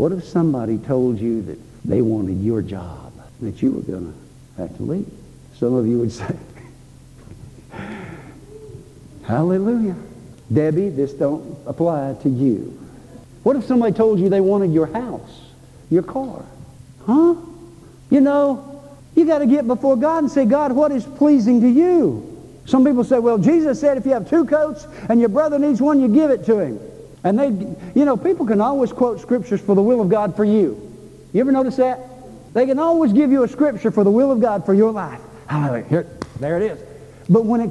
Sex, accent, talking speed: male, American, 195 wpm